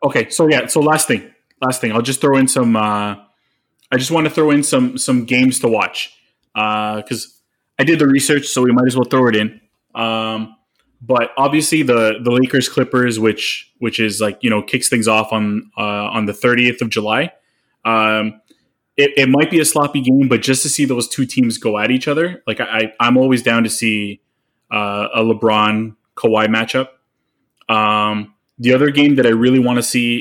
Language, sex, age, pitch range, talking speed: English, male, 20-39, 110-135 Hz, 205 wpm